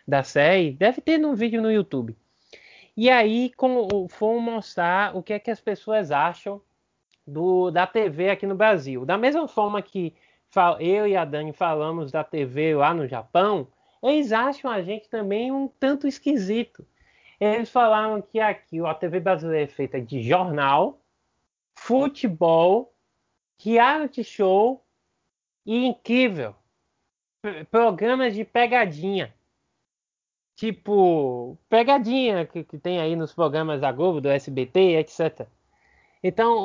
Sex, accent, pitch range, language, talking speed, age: male, Brazilian, 155-225 Hz, Portuguese, 140 wpm, 20-39